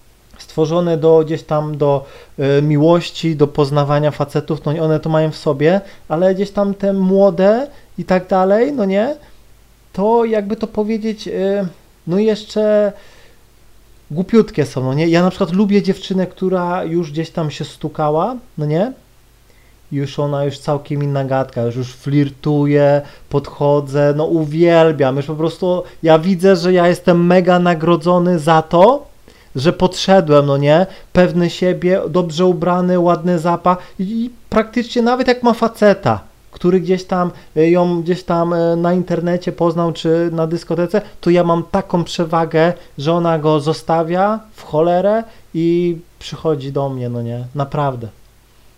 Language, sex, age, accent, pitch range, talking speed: Polish, male, 30-49, native, 145-185 Hz, 150 wpm